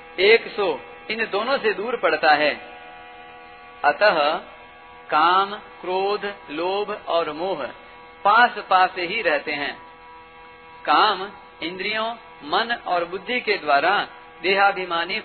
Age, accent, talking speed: 50-69, native, 100 wpm